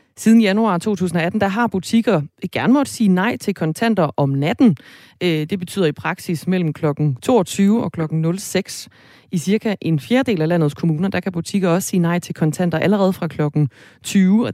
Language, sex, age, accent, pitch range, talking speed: Danish, female, 30-49, native, 160-205 Hz, 180 wpm